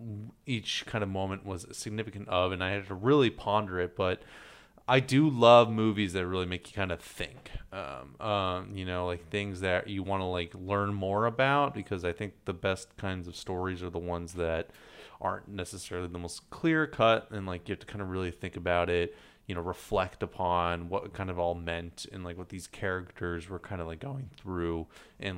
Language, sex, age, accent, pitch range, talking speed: English, male, 30-49, American, 90-110 Hz, 215 wpm